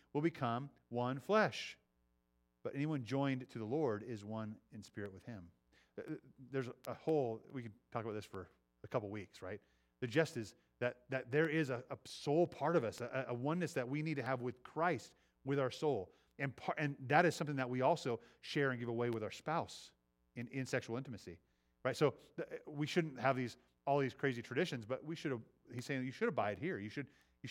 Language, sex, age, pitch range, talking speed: English, male, 30-49, 105-140 Hz, 215 wpm